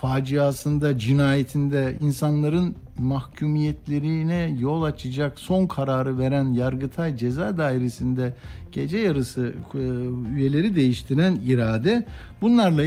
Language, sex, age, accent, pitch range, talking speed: Turkish, male, 60-79, native, 125-185 Hz, 90 wpm